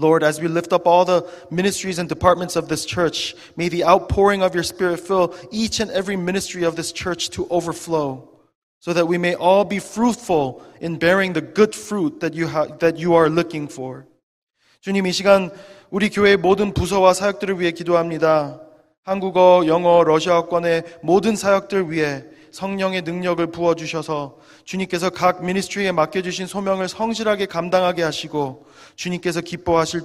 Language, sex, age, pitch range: Korean, male, 20-39, 160-190 Hz